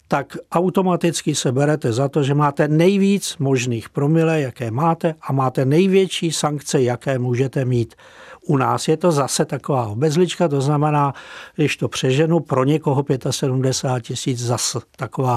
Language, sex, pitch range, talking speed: Czech, male, 130-160 Hz, 150 wpm